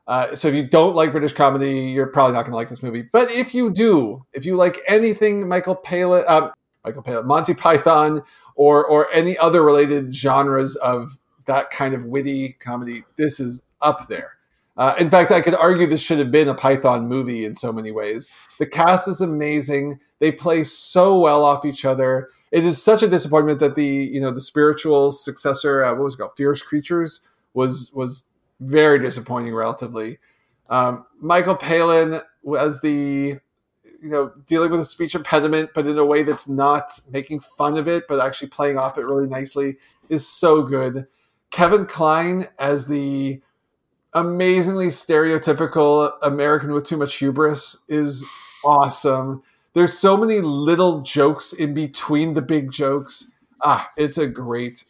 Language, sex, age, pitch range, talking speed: English, male, 40-59, 135-165 Hz, 175 wpm